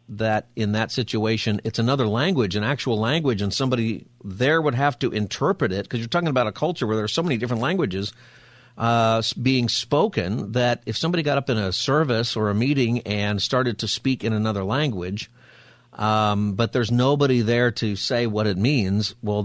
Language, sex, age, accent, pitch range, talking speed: English, male, 50-69, American, 100-120 Hz, 190 wpm